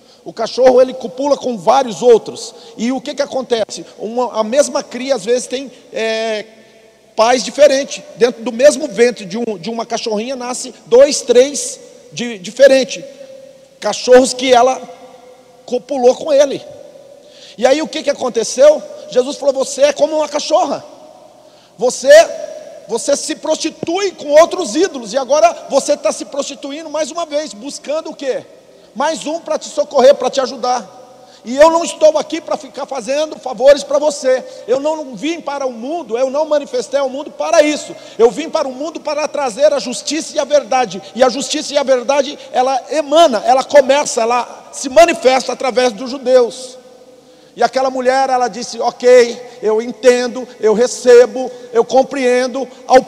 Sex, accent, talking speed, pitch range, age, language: male, Brazilian, 165 wpm, 250-295 Hz, 50-69, Portuguese